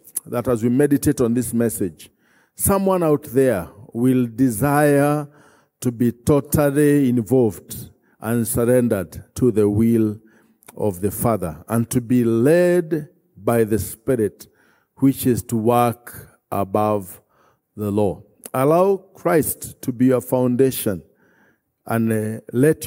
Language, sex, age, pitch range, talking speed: English, male, 50-69, 115-160 Hz, 120 wpm